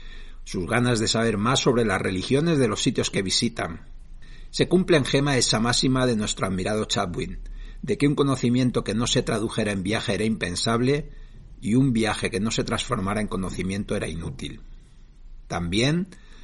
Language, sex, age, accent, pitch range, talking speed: Spanish, male, 50-69, Spanish, 105-135 Hz, 170 wpm